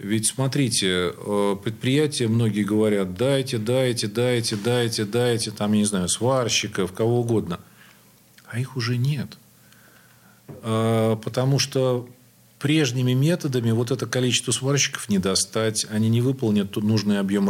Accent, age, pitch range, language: native, 40-59, 100-125 Hz, Russian